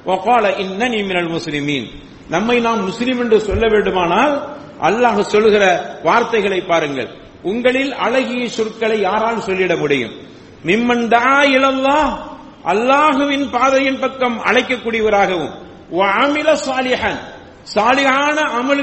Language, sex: English, male